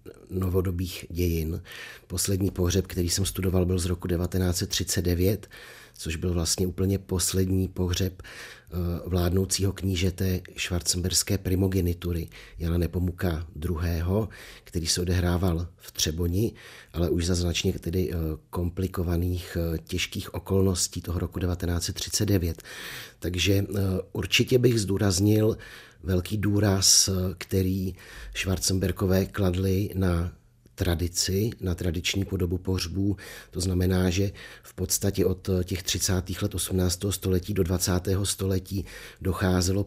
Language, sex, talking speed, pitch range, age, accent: Czech, male, 105 wpm, 90-95 Hz, 40-59, native